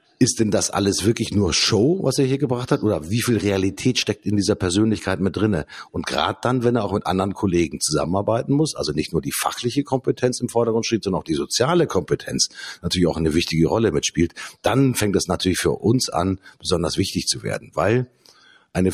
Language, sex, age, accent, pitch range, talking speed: German, male, 50-69, German, 90-115 Hz, 210 wpm